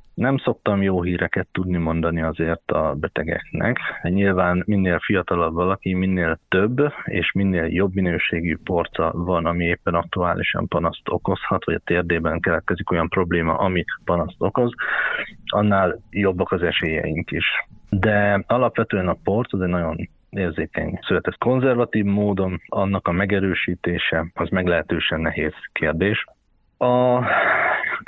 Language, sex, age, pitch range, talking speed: Hungarian, male, 30-49, 85-100 Hz, 130 wpm